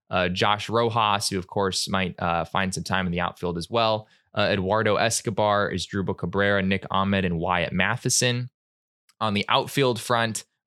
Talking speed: 175 wpm